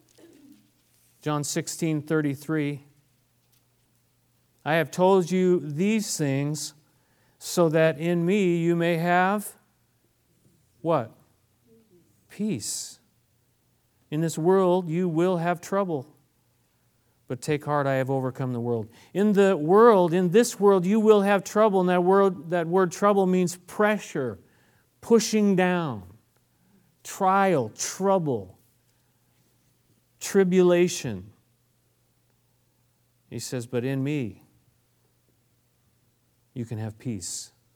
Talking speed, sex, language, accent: 100 wpm, male, English, American